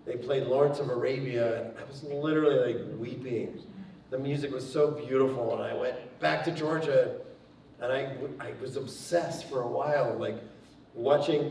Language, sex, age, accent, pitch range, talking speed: English, male, 40-59, American, 110-145 Hz, 165 wpm